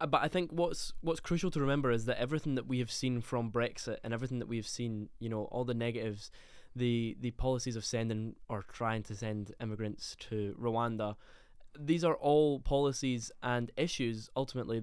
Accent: British